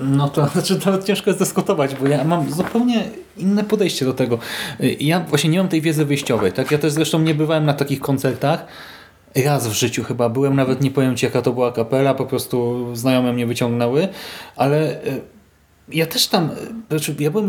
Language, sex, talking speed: Polish, male, 190 wpm